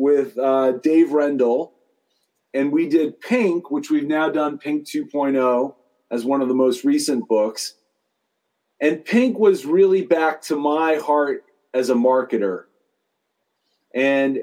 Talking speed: 135 wpm